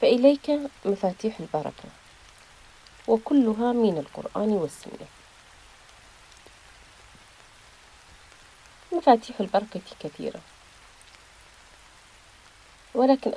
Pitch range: 185-240 Hz